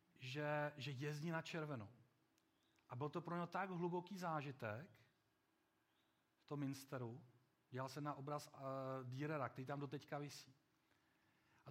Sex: male